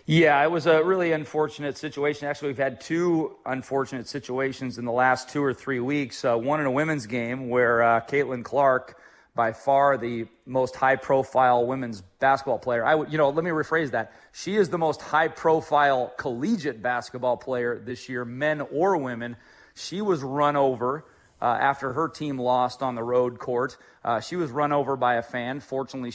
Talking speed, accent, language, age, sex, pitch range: 185 wpm, American, English, 30-49, male, 130-160 Hz